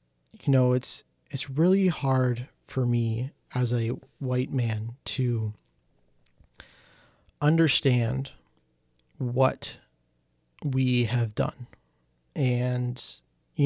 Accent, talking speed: American, 90 wpm